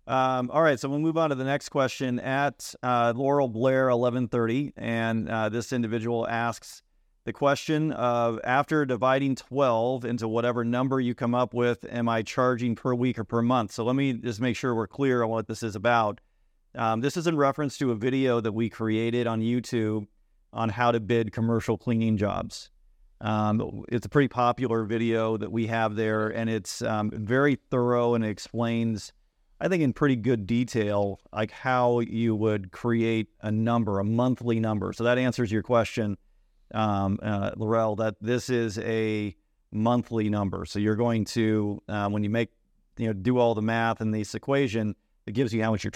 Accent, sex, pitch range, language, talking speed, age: American, male, 110-125 Hz, English, 190 wpm, 40-59